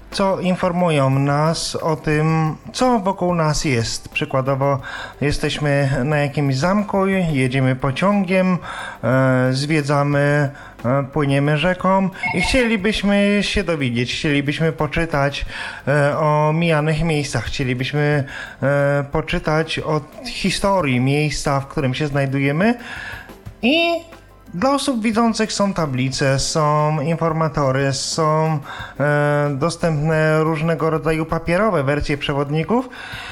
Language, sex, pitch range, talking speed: Polish, male, 145-185 Hz, 95 wpm